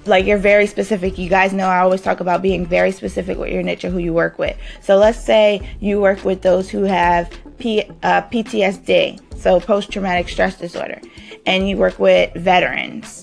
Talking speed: 190 wpm